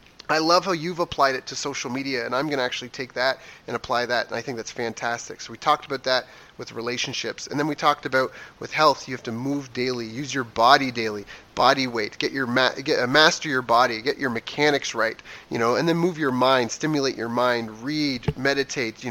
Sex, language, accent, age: male, English, American, 30-49